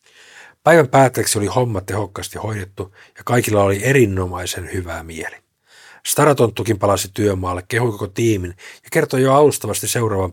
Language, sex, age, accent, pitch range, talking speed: Finnish, male, 50-69, native, 95-120 Hz, 135 wpm